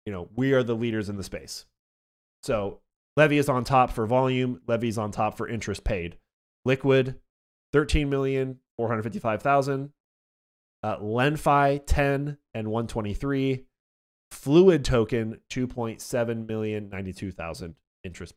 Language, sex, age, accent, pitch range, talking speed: English, male, 30-49, American, 110-140 Hz, 110 wpm